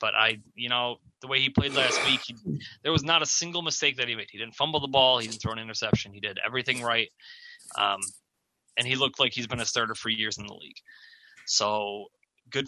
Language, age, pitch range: English, 20-39, 110-155 Hz